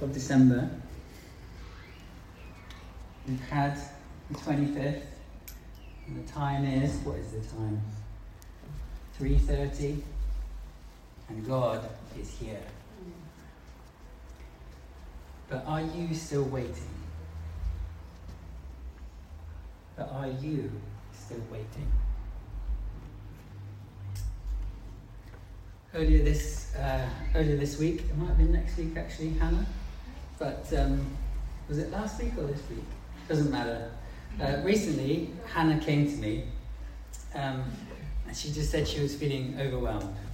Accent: British